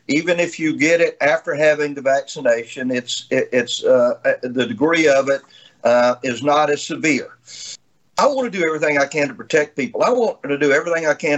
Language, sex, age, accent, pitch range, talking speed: English, male, 50-69, American, 135-175 Hz, 205 wpm